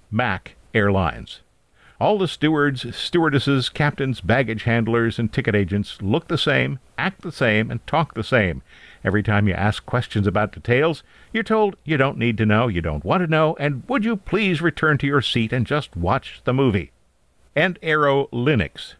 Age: 60-79